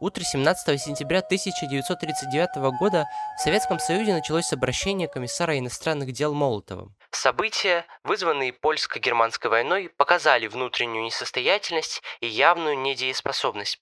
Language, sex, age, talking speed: Russian, male, 20-39, 105 wpm